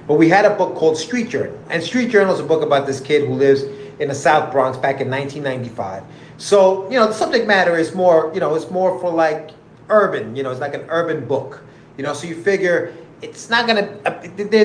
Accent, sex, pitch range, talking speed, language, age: American, male, 140-195 Hz, 230 wpm, English, 30-49